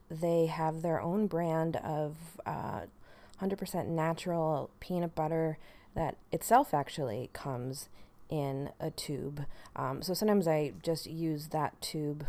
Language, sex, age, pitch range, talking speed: English, female, 30-49, 145-170 Hz, 125 wpm